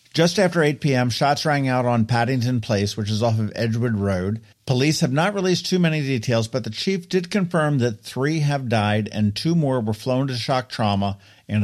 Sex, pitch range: male, 105-150 Hz